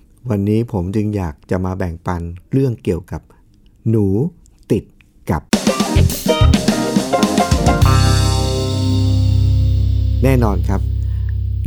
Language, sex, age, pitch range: Thai, male, 60-79, 100-140 Hz